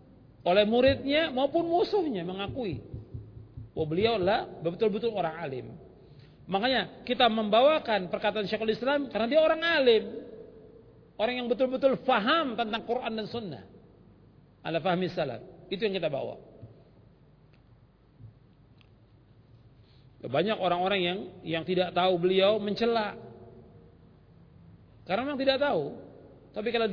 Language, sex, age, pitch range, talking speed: Malay, male, 40-59, 155-215 Hz, 110 wpm